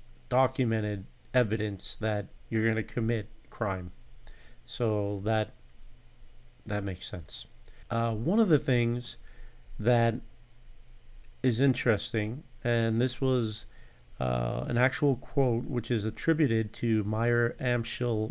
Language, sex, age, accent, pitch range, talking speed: English, male, 40-59, American, 110-125 Hz, 110 wpm